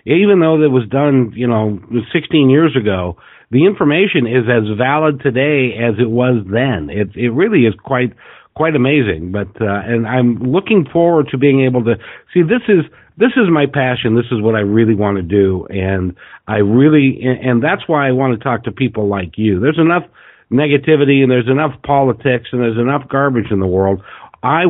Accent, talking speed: American, 200 wpm